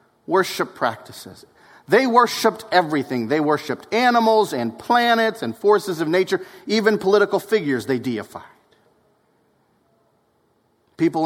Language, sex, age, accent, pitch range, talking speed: English, male, 40-59, American, 145-225 Hz, 105 wpm